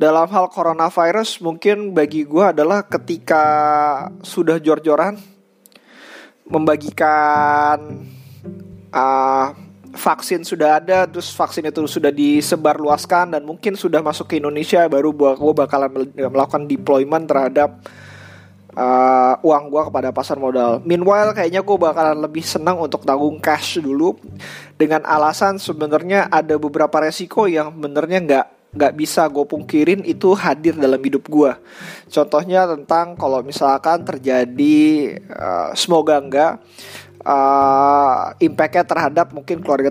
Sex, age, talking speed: male, 20-39, 120 wpm